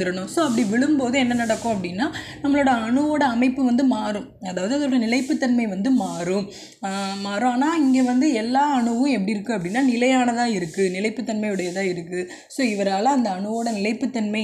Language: Tamil